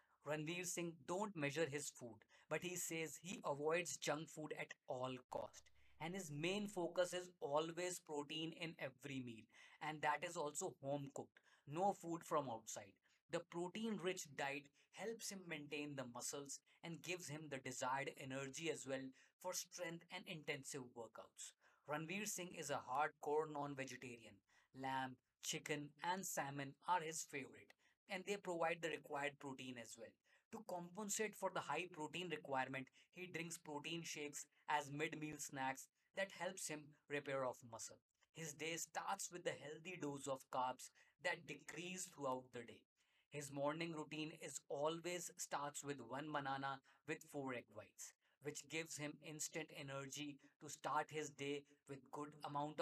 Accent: Indian